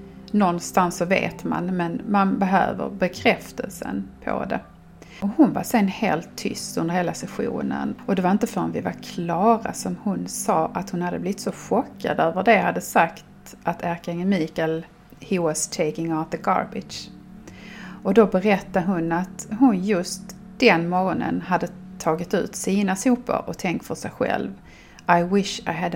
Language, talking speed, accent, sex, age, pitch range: Swedish, 165 wpm, native, female, 30-49, 175-205 Hz